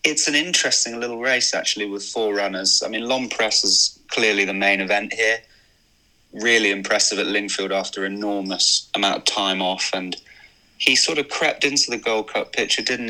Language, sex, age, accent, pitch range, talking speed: English, male, 20-39, British, 95-110 Hz, 185 wpm